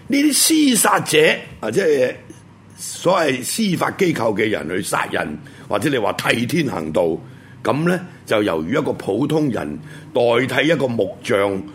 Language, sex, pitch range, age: Chinese, male, 95-140 Hz, 70-89